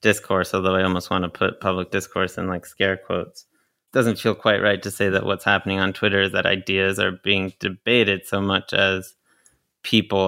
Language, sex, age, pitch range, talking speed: English, male, 30-49, 95-105 Hz, 200 wpm